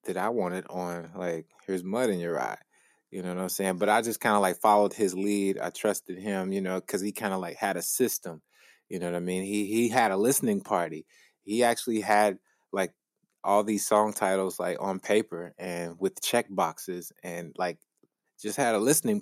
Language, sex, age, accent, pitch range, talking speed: English, male, 20-39, American, 85-100 Hz, 220 wpm